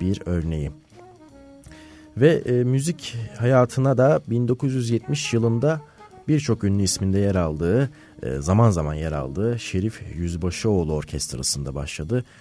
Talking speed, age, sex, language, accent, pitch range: 110 wpm, 40-59, male, Turkish, native, 80-115 Hz